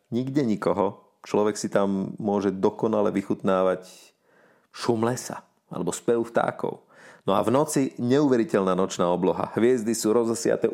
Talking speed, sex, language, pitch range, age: 130 wpm, male, Slovak, 100-120 Hz, 40-59